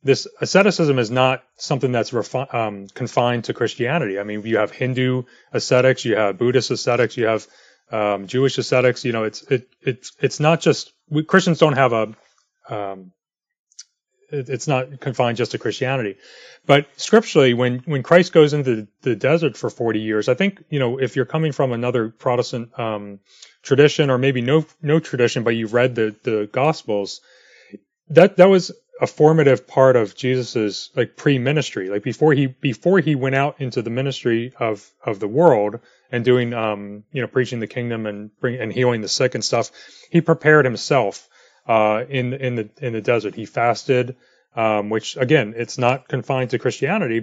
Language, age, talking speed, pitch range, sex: English, 30-49, 180 wpm, 115-140 Hz, male